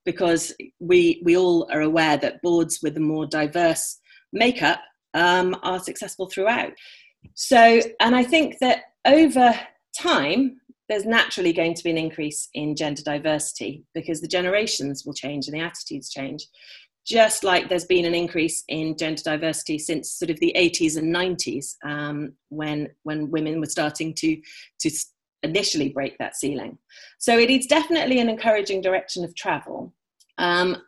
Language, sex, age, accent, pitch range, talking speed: English, female, 30-49, British, 155-210 Hz, 155 wpm